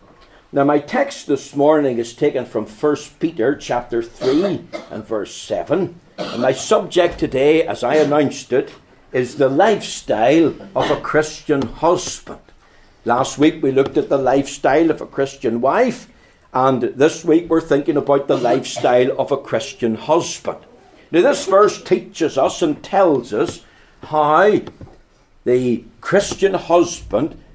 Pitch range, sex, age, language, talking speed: 135-165 Hz, male, 60-79, English, 140 wpm